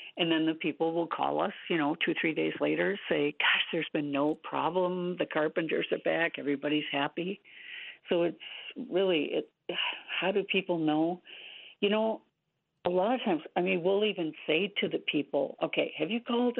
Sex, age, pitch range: female, 60-79, 145-195 Hz